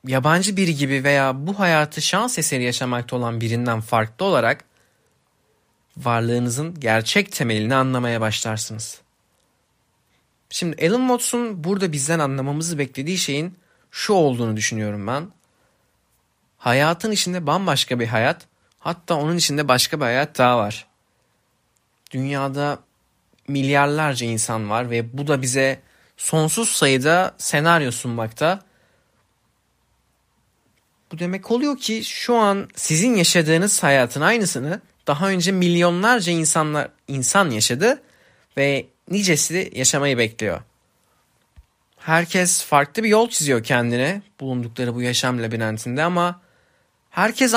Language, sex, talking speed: Turkish, male, 110 wpm